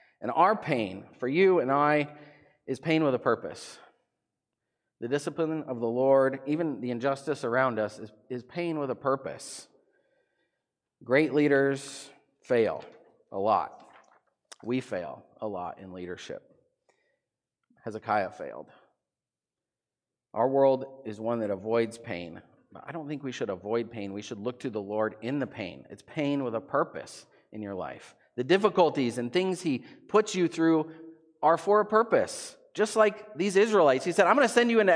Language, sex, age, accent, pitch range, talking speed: English, male, 40-59, American, 110-165 Hz, 165 wpm